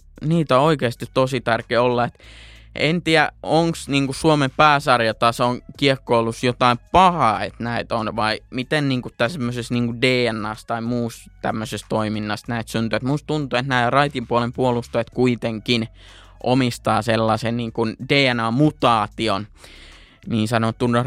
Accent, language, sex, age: native, Finnish, male, 20-39